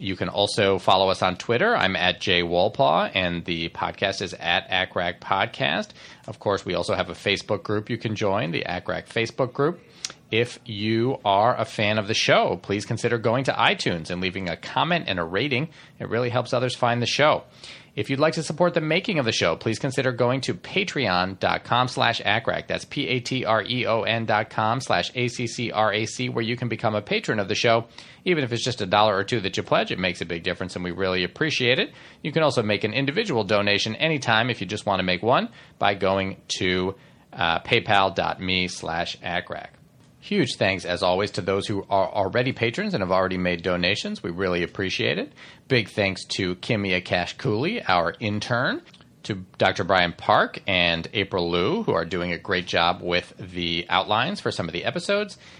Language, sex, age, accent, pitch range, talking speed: English, male, 40-59, American, 90-120 Hz, 190 wpm